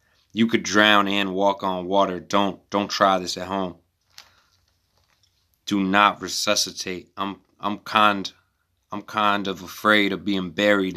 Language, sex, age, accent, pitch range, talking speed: English, male, 20-39, American, 90-105 Hz, 140 wpm